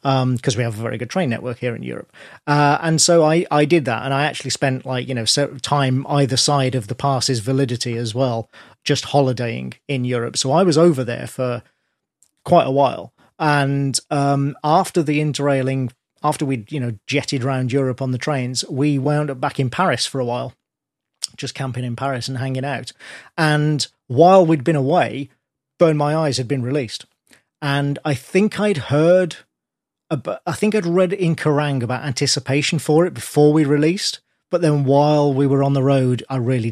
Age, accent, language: 40-59, British, English